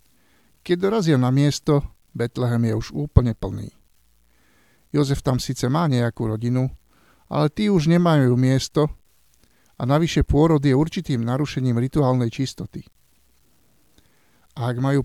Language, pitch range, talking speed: Slovak, 120-145 Hz, 120 wpm